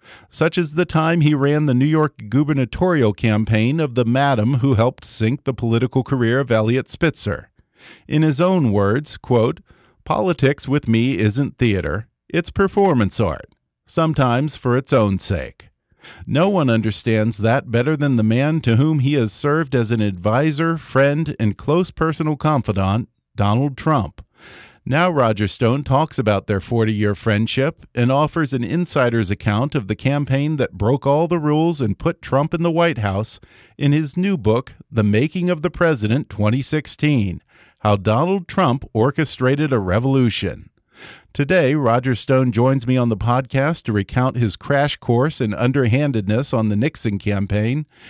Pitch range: 110-150 Hz